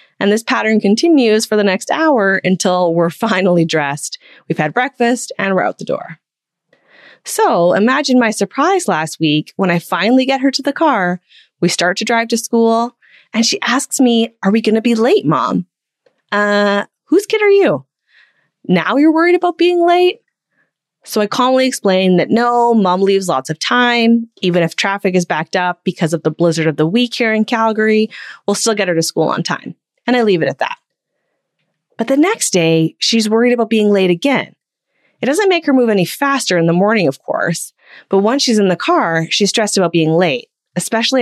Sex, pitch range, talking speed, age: female, 180-260 Hz, 200 wpm, 20-39